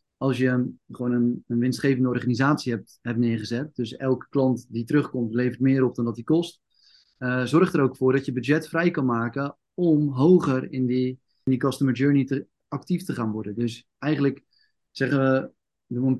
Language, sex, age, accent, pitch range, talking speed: Dutch, male, 30-49, Dutch, 120-140 Hz, 195 wpm